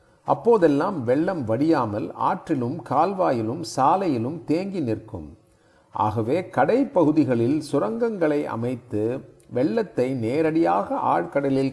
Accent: native